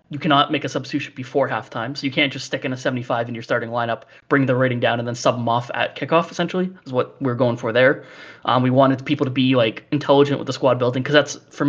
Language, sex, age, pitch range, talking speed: English, male, 20-39, 125-145 Hz, 265 wpm